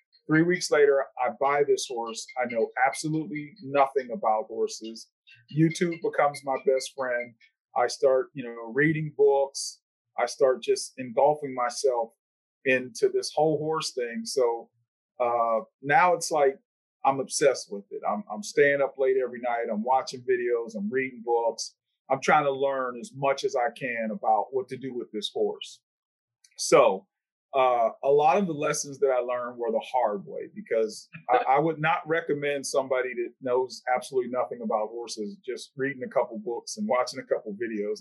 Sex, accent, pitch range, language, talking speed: male, American, 125-180 Hz, English, 170 wpm